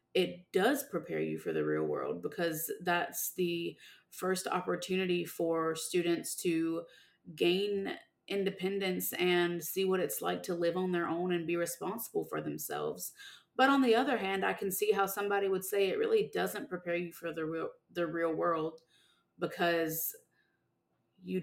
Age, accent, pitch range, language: 30-49, American, 170-205 Hz, English